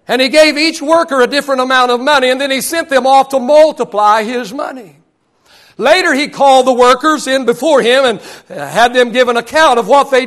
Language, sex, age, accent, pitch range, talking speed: English, male, 60-79, American, 235-295 Hz, 215 wpm